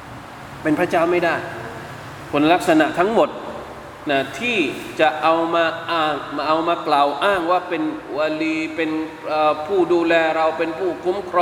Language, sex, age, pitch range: Thai, male, 20-39, 145-170 Hz